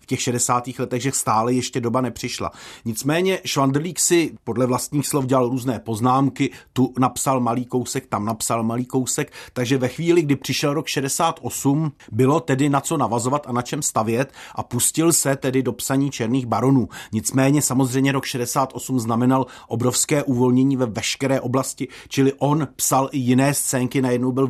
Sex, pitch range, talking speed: male, 125-145 Hz, 165 wpm